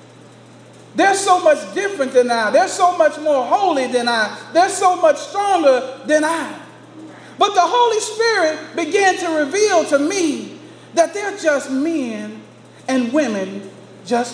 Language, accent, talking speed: English, American, 145 wpm